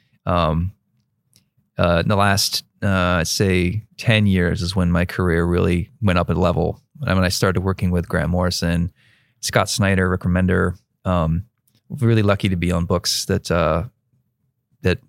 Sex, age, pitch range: male, 20-39, 90-110 Hz